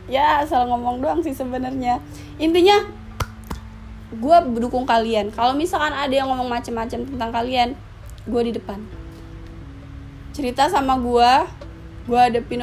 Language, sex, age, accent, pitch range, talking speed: Indonesian, female, 20-39, native, 230-280 Hz, 125 wpm